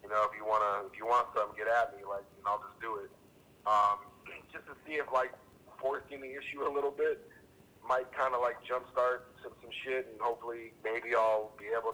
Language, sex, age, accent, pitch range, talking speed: English, male, 30-49, American, 100-120 Hz, 220 wpm